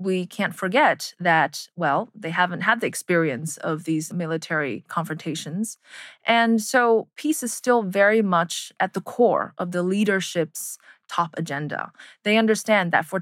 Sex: female